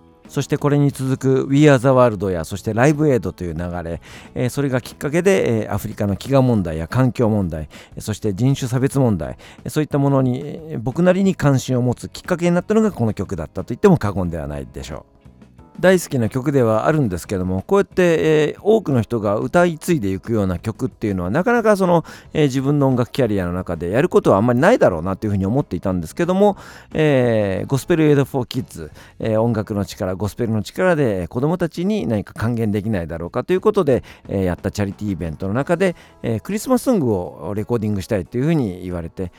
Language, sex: Japanese, male